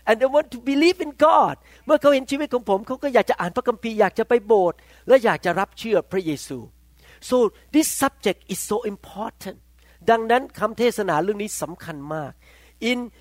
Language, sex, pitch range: Thai, male, 170-250 Hz